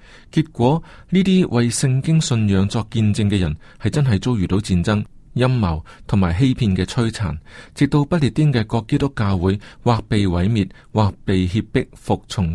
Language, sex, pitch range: Chinese, male, 95-130 Hz